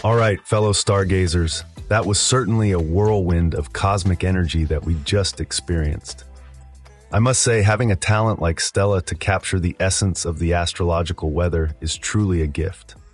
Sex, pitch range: male, 80-100 Hz